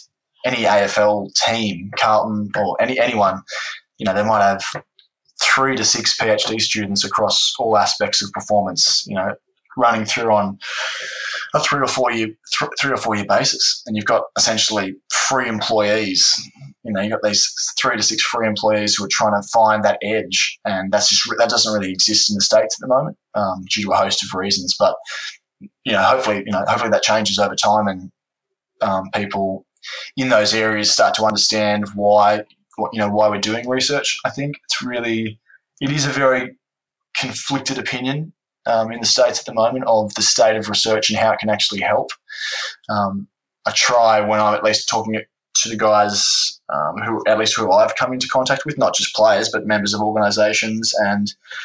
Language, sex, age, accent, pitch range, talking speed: English, male, 20-39, Australian, 105-115 Hz, 195 wpm